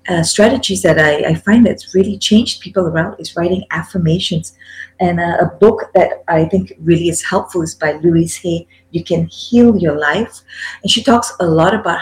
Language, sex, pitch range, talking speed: English, female, 165-200 Hz, 195 wpm